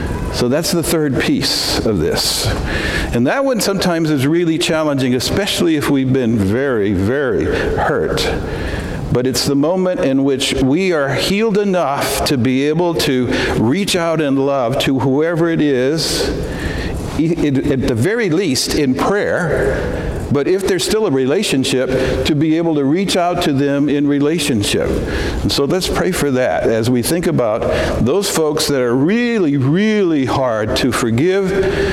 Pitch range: 115-155 Hz